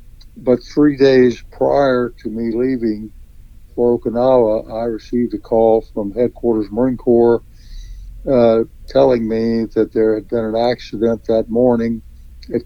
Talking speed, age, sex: 135 wpm, 60-79, male